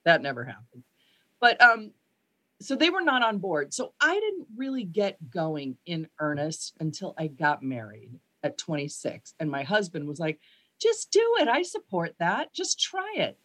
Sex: female